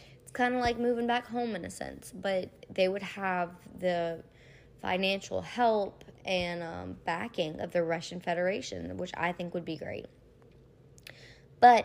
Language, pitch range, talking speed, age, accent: English, 170-215 Hz, 150 wpm, 20-39, American